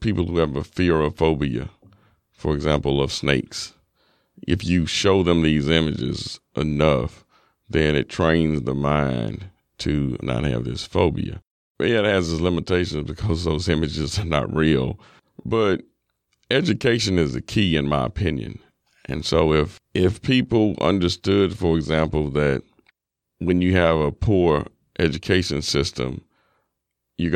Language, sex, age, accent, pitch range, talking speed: English, male, 40-59, American, 75-95 Hz, 145 wpm